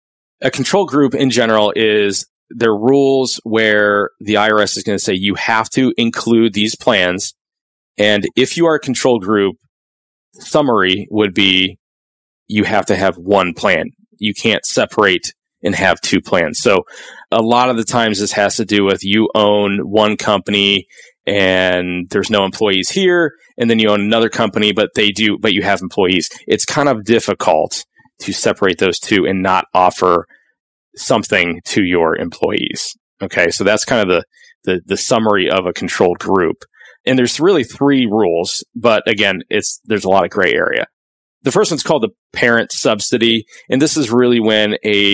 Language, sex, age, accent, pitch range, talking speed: English, male, 30-49, American, 100-125 Hz, 175 wpm